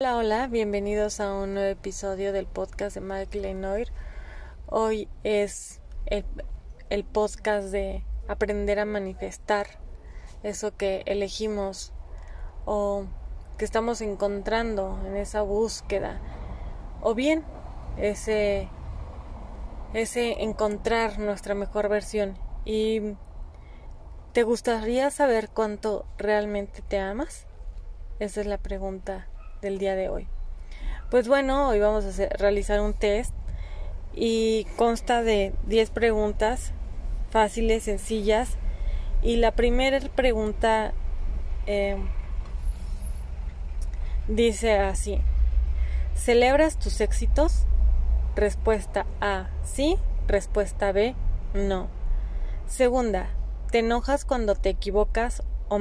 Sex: female